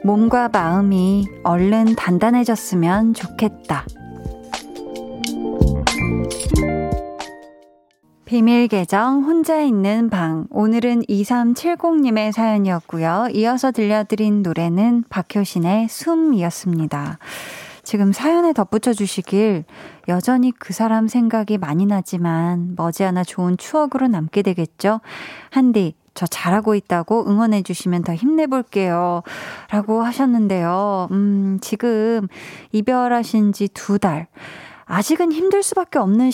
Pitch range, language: 180-235 Hz, Korean